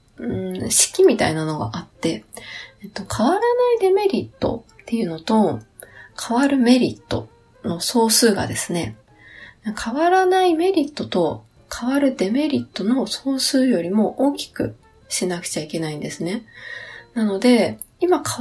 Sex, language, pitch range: female, Japanese, 190-300 Hz